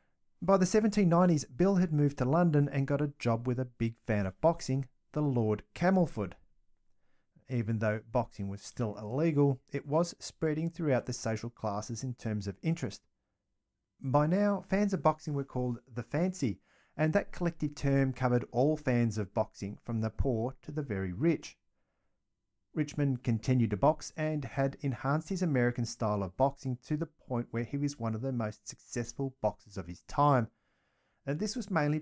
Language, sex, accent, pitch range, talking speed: English, male, Australian, 110-150 Hz, 175 wpm